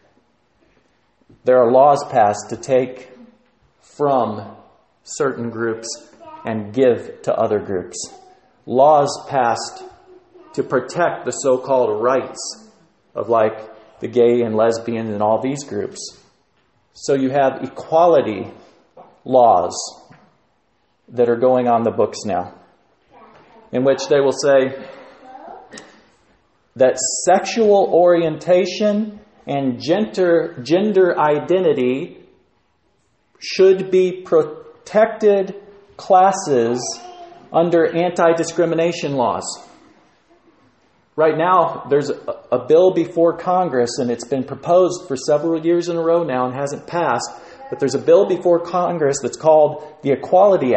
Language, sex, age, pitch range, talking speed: English, male, 40-59, 130-195 Hz, 110 wpm